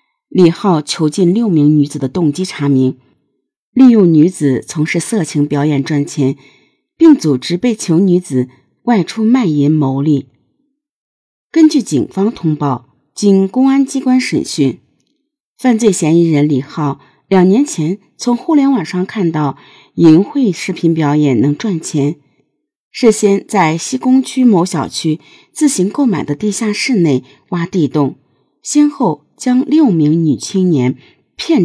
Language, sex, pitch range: Chinese, female, 145-225 Hz